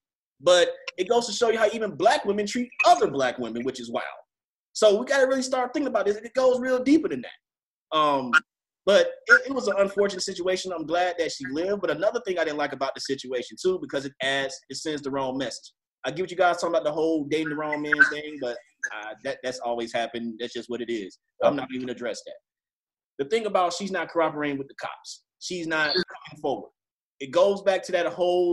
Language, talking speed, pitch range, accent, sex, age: English, 240 wpm, 160-240 Hz, American, male, 30-49